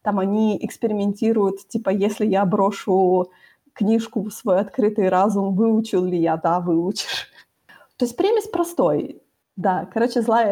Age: 20-39